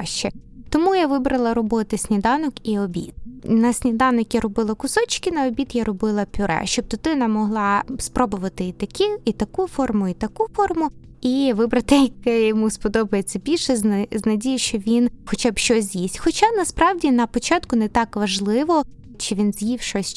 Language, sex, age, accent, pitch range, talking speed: Ukrainian, female, 20-39, native, 215-275 Hz, 160 wpm